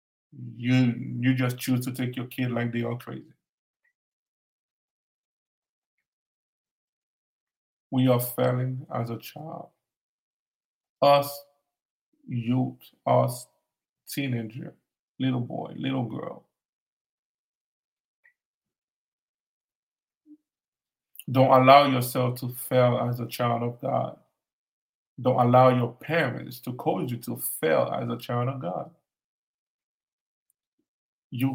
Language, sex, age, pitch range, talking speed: English, male, 50-69, 120-150 Hz, 95 wpm